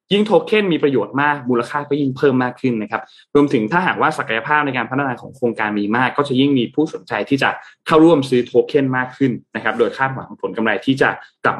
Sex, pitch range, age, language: male, 115-150 Hz, 20-39, Thai